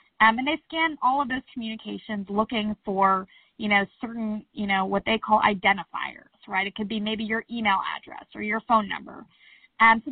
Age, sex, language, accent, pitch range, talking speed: 20-39, female, English, American, 200-235 Hz, 195 wpm